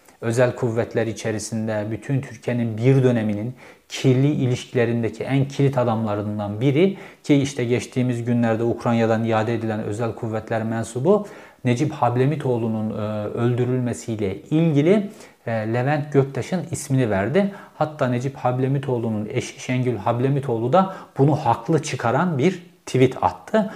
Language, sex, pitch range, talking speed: Turkish, male, 115-150 Hz, 110 wpm